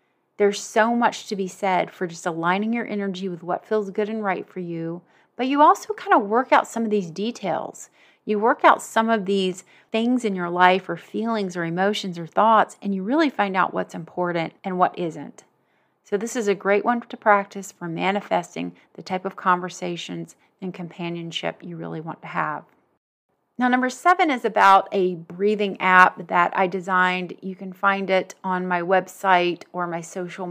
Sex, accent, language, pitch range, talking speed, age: female, American, English, 175-205 Hz, 195 wpm, 30-49